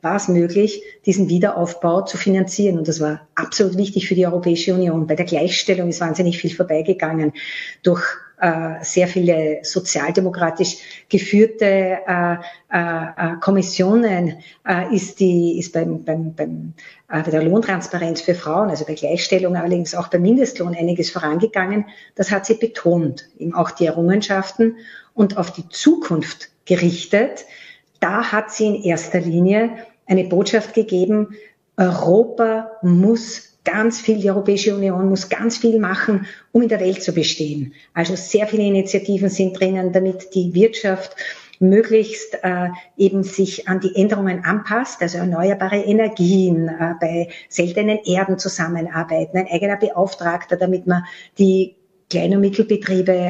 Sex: female